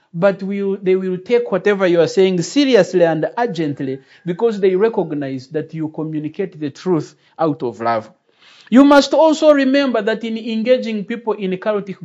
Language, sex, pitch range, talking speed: English, male, 180-250 Hz, 165 wpm